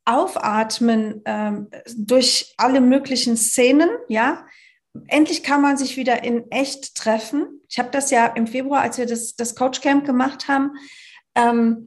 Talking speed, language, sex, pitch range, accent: 145 wpm, German, female, 230-280 Hz, German